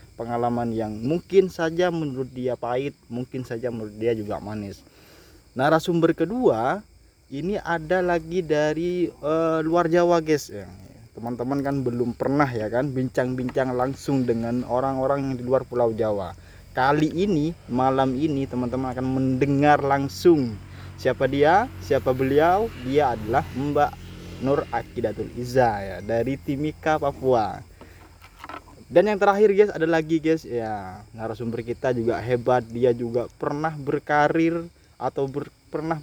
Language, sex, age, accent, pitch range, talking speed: Indonesian, male, 20-39, native, 115-150 Hz, 130 wpm